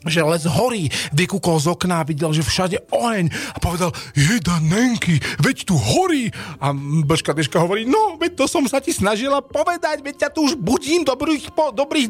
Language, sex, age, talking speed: Slovak, male, 40-59, 185 wpm